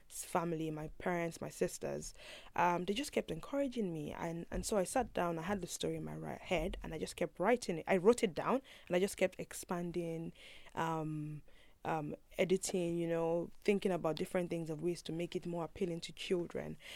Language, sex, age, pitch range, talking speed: English, female, 20-39, 170-215 Hz, 205 wpm